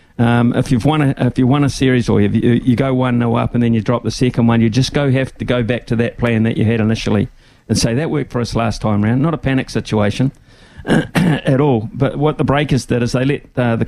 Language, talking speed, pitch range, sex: English, 275 wpm, 115-130 Hz, male